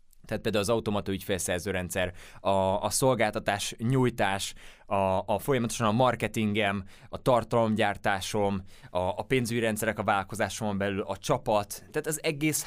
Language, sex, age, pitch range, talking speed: Hungarian, male, 20-39, 105-130 Hz, 135 wpm